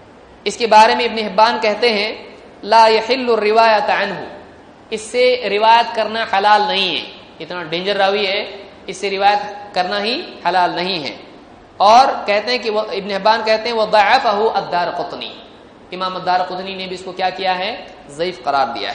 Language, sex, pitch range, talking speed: Hindi, male, 200-235 Hz, 135 wpm